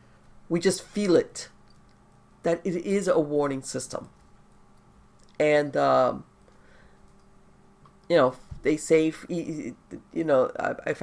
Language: English